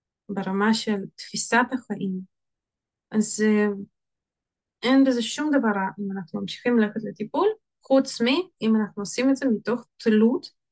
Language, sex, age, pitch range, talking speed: Hebrew, female, 20-39, 200-245 Hz, 130 wpm